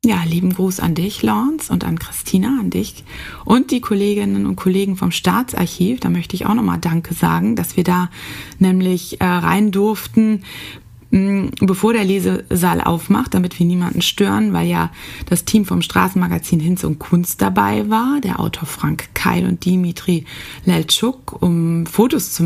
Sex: female